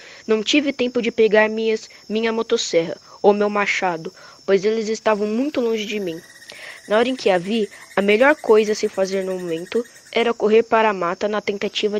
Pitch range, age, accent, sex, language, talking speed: 190-230 Hz, 10-29, Brazilian, female, Portuguese, 190 wpm